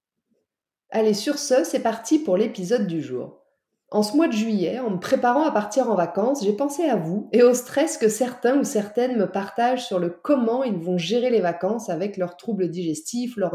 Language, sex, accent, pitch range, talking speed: French, female, French, 190-245 Hz, 210 wpm